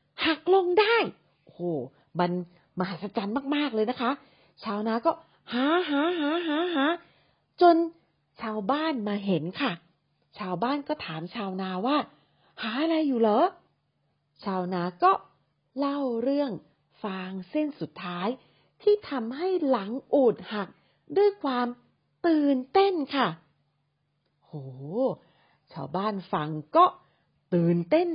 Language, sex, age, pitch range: English, female, 40-59, 170-275 Hz